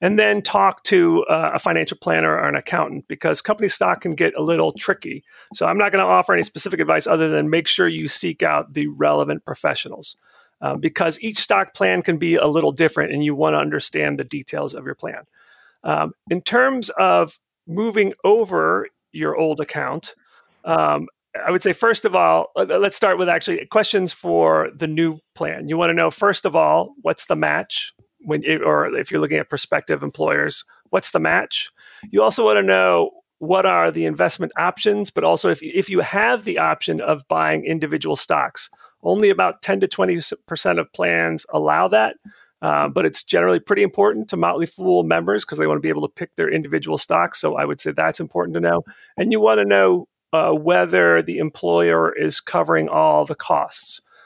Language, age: English, 40-59